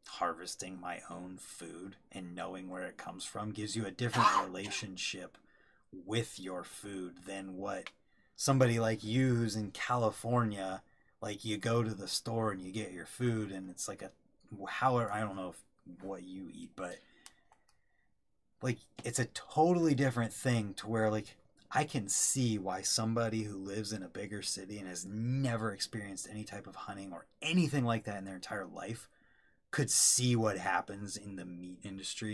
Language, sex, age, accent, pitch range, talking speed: English, male, 30-49, American, 95-115 Hz, 175 wpm